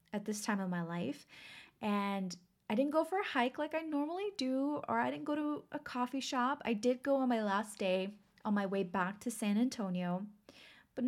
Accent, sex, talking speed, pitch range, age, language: American, female, 215 wpm, 195-260 Hz, 20-39, English